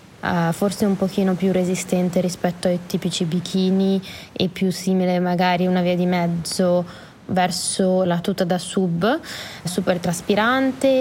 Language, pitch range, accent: Italian, 180-215 Hz, native